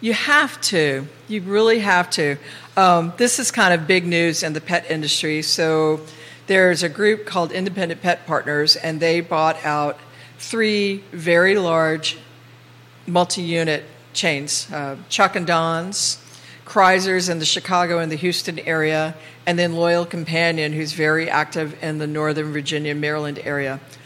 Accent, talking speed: American, 150 wpm